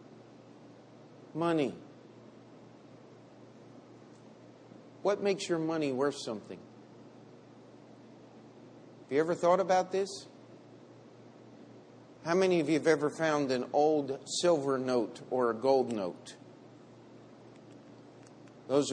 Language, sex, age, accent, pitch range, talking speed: English, male, 50-69, American, 140-190 Hz, 90 wpm